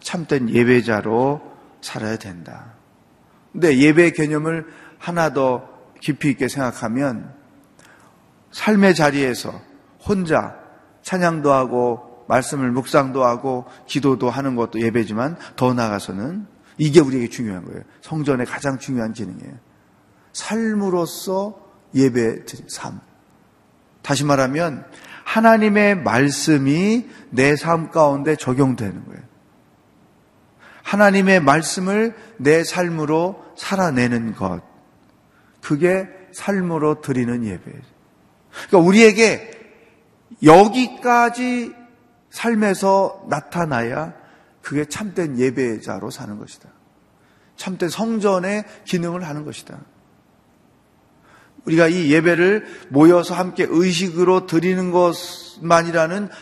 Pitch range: 130-185 Hz